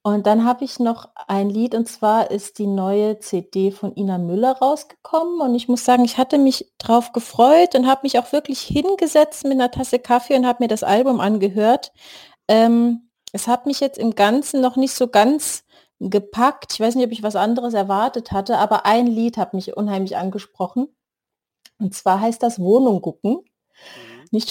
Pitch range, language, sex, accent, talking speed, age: 200-240 Hz, German, female, German, 190 wpm, 30-49